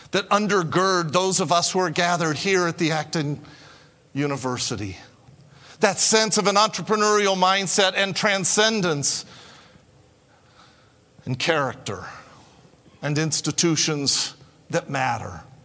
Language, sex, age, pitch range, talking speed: English, male, 50-69, 145-195 Hz, 105 wpm